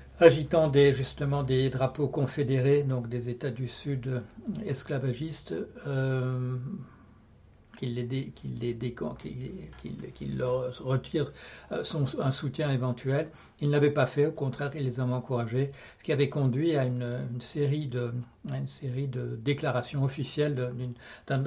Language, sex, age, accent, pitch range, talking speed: French, male, 60-79, French, 125-145 Hz, 155 wpm